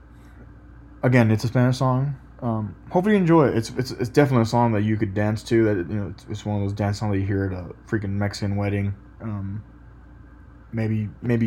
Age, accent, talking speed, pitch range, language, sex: 20-39, American, 220 wpm, 100-115 Hz, English, male